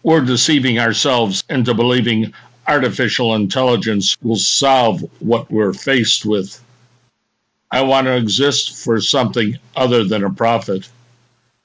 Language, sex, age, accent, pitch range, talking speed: English, male, 60-79, American, 110-125 Hz, 120 wpm